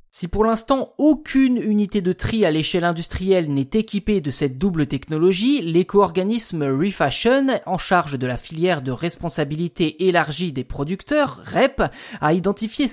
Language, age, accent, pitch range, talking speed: French, 20-39, French, 155-220 Hz, 145 wpm